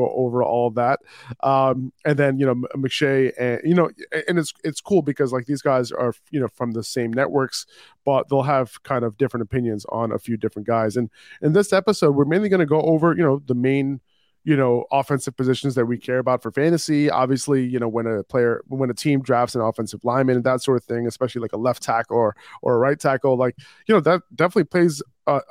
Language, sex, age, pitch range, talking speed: English, male, 20-39, 120-145 Hz, 230 wpm